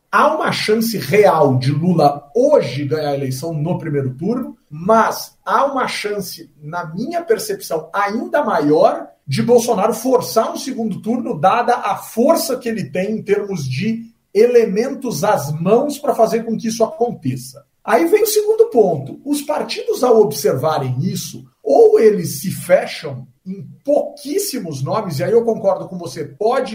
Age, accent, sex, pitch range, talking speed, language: 50-69, Brazilian, male, 165-255 Hz, 155 wpm, Portuguese